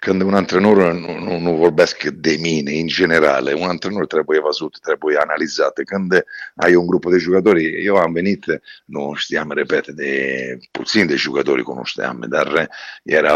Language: Romanian